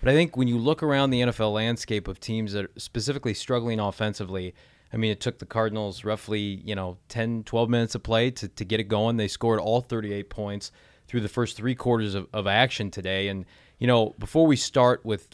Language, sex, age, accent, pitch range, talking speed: English, male, 30-49, American, 100-120 Hz, 225 wpm